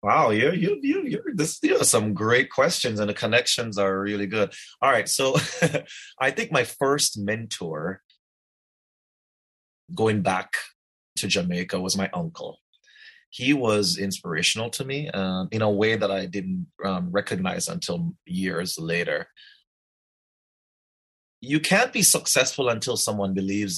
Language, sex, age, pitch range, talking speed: English, male, 30-49, 95-120 Hz, 140 wpm